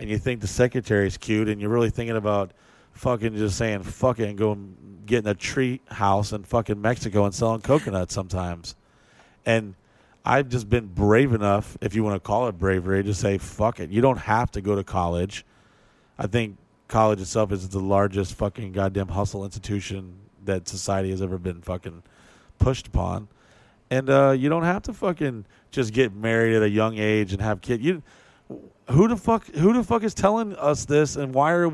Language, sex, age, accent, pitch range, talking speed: English, male, 30-49, American, 100-125 Hz, 195 wpm